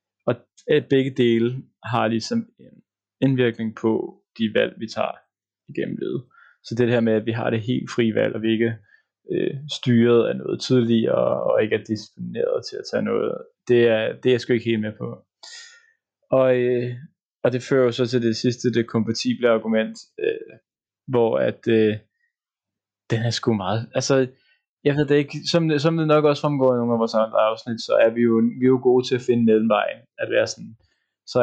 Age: 20-39